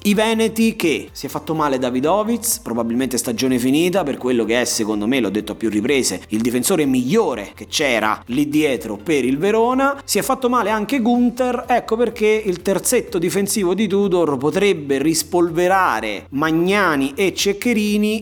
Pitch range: 145-220 Hz